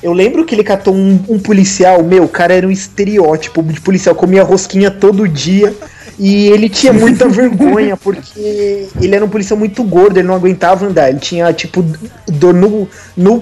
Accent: Brazilian